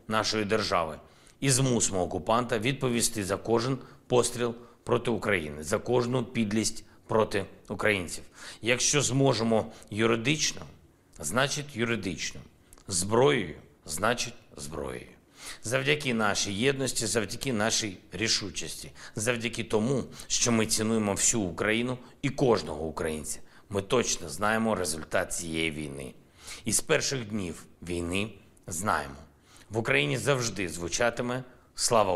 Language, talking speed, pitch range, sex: Ukrainian, 105 wpm, 95-120 Hz, male